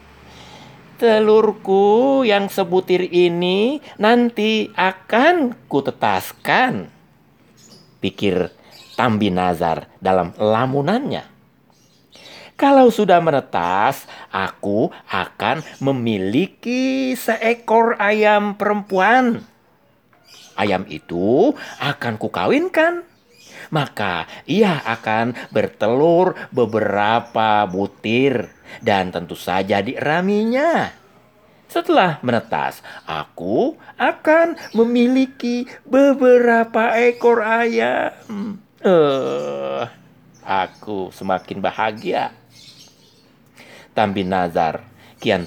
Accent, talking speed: native, 65 wpm